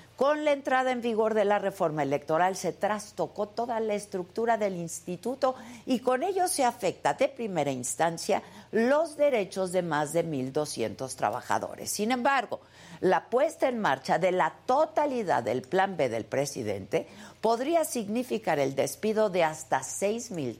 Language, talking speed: Spanish, 150 wpm